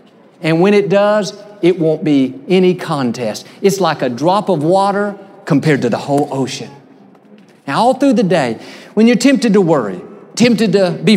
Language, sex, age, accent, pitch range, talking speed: English, male, 50-69, American, 145-210 Hz, 175 wpm